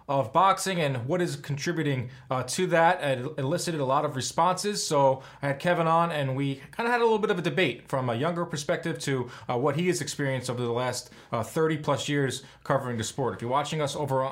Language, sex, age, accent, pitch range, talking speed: English, male, 30-49, American, 140-175 Hz, 235 wpm